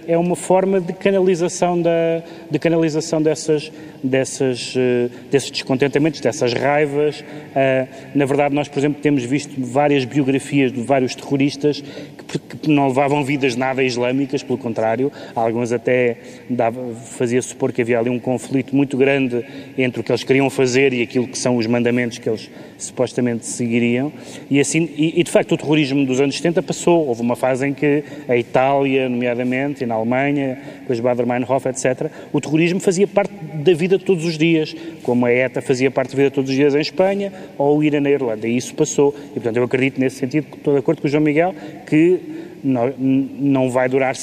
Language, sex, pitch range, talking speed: Portuguese, male, 130-155 Hz, 180 wpm